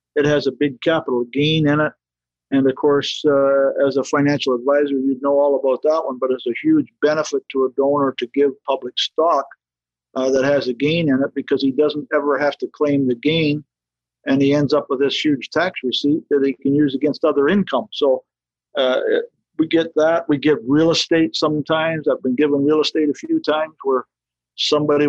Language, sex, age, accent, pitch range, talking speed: English, male, 50-69, American, 130-150 Hz, 205 wpm